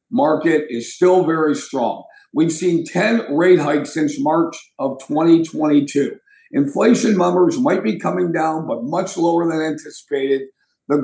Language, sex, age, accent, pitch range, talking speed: English, male, 50-69, American, 155-220 Hz, 140 wpm